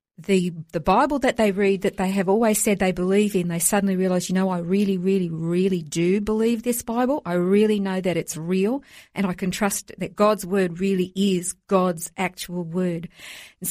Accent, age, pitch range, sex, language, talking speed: Australian, 50-69, 180-220 Hz, female, English, 200 wpm